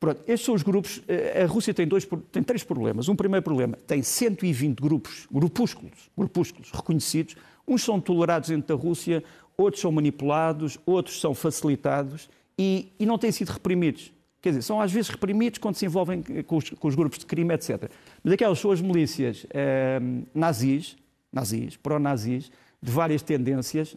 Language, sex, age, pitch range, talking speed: Portuguese, male, 50-69, 150-185 Hz, 175 wpm